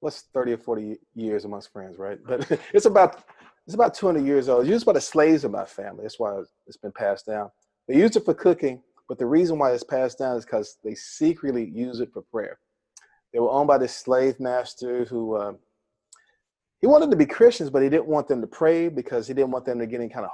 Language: English